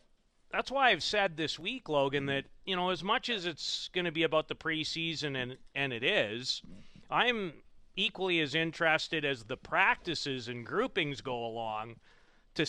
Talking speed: 170 wpm